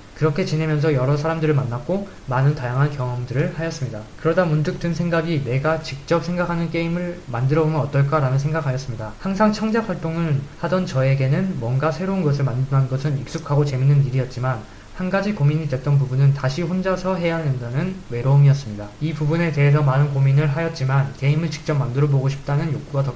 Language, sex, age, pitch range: Korean, male, 20-39, 135-165 Hz